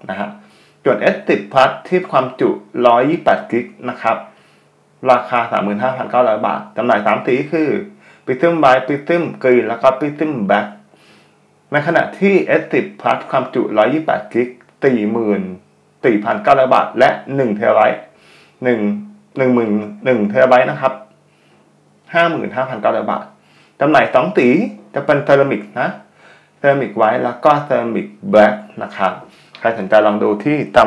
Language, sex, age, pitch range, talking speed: English, male, 20-39, 105-130 Hz, 60 wpm